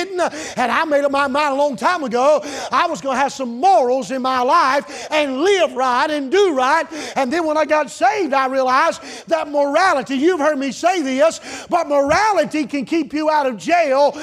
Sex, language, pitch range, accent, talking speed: male, English, 235-305 Hz, American, 205 wpm